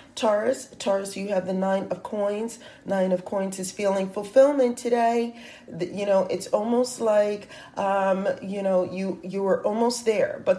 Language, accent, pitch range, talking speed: English, American, 180-205 Hz, 165 wpm